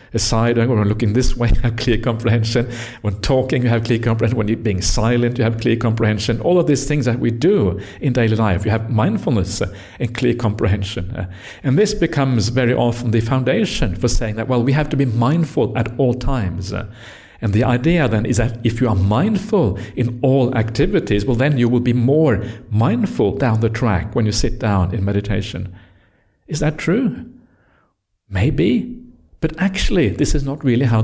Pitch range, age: 105-130 Hz, 60-79